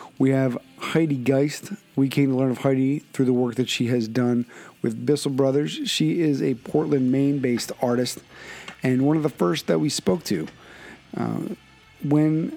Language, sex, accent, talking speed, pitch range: English, male, American, 175 wpm, 125-145 Hz